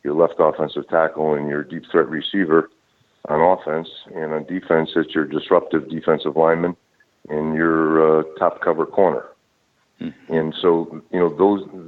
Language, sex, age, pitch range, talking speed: English, male, 50-69, 80-85 Hz, 150 wpm